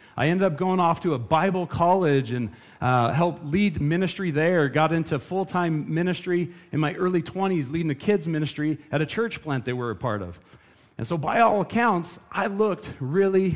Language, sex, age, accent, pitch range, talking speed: English, male, 40-59, American, 130-180 Hz, 195 wpm